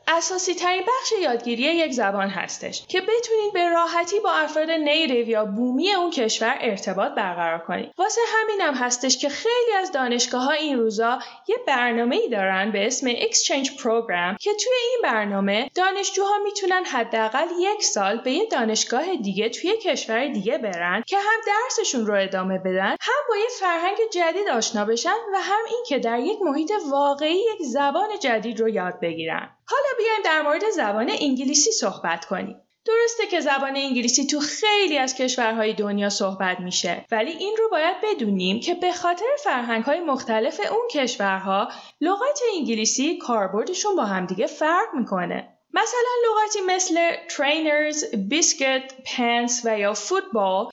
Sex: female